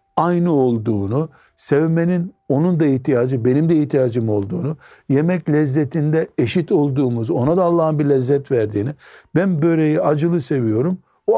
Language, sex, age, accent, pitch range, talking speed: Turkish, male, 60-79, native, 135-170 Hz, 130 wpm